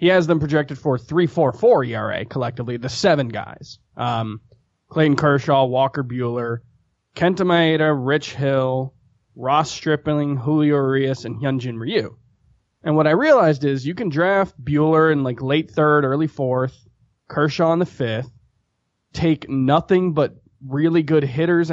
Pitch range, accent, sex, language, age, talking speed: 125-155 Hz, American, male, English, 20-39, 150 wpm